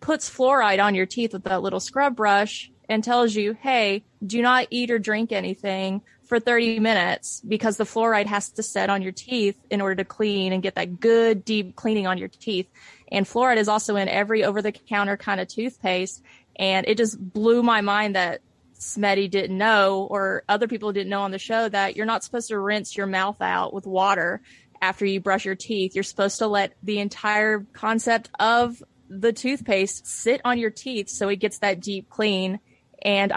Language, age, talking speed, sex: English, 30-49, 200 wpm, female